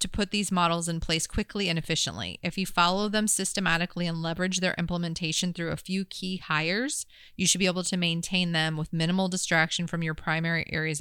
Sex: female